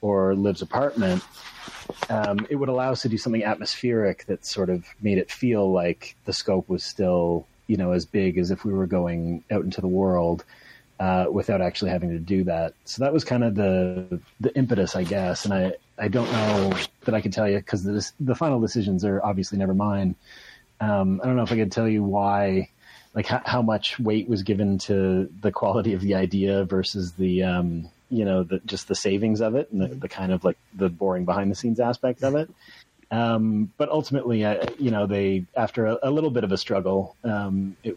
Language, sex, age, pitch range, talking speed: English, male, 30-49, 95-115 Hz, 215 wpm